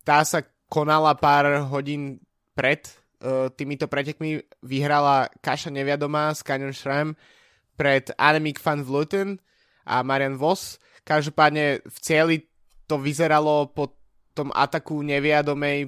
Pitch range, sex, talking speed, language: 130-150 Hz, male, 115 wpm, Slovak